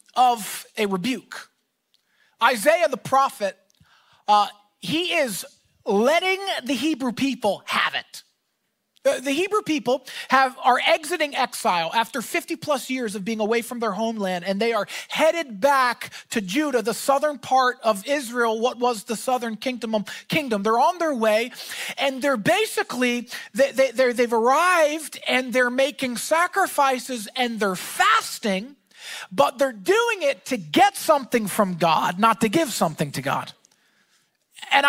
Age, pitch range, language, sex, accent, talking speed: 30-49, 225-315 Hz, English, male, American, 150 wpm